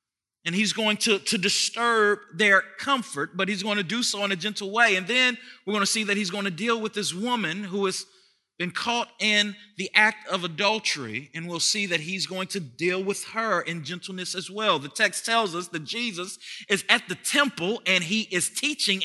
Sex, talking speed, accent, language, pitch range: male, 215 wpm, American, English, 190-245 Hz